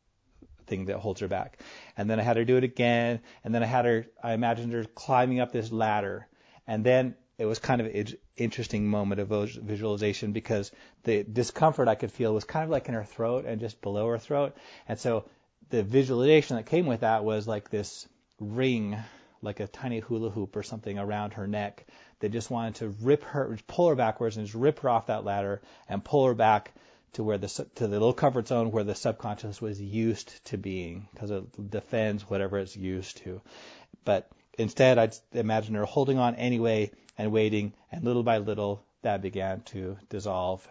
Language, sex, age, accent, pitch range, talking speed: English, male, 30-49, American, 105-120 Hz, 200 wpm